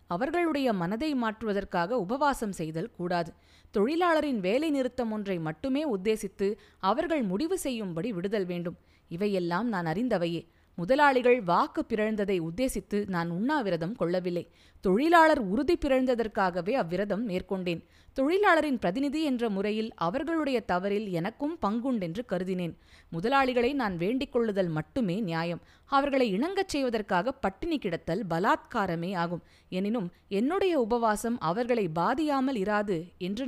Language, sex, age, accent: Tamil, female, 20-39, native